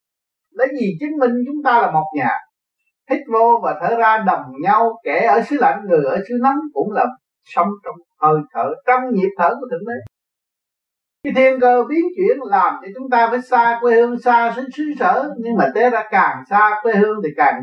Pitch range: 185-250 Hz